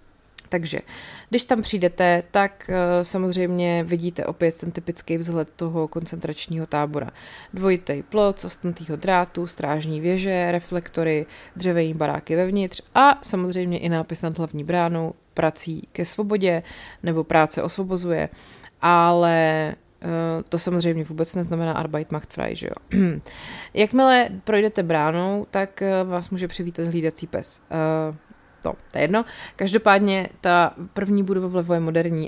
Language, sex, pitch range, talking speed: Czech, female, 165-185 Hz, 130 wpm